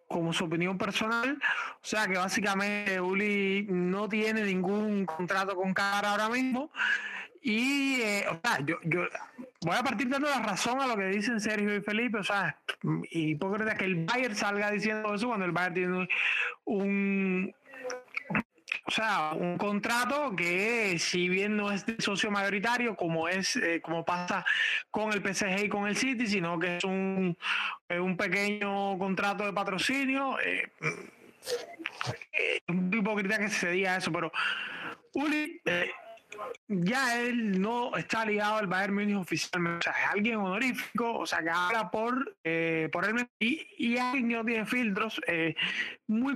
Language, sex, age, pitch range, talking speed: Spanish, male, 20-39, 185-235 Hz, 165 wpm